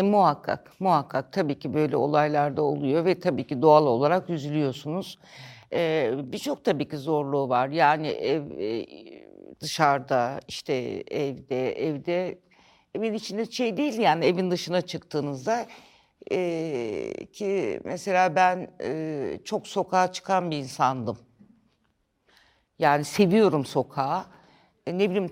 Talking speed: 120 wpm